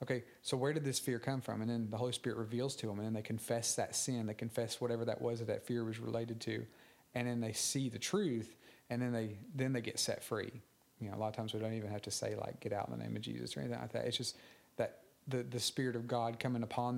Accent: American